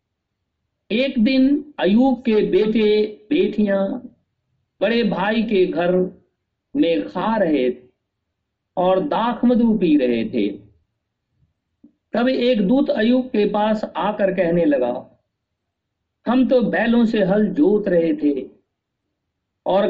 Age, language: 50-69, Hindi